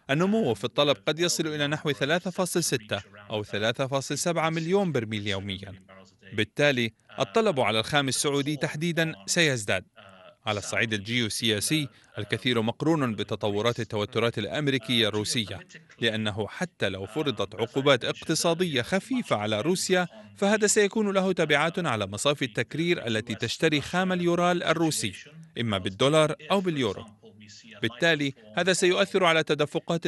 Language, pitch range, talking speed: Arabic, 110-165 Hz, 120 wpm